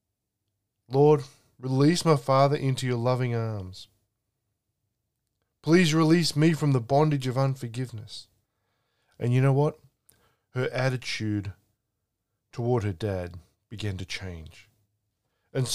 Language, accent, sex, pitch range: English, Australian, male, 105-130 Hz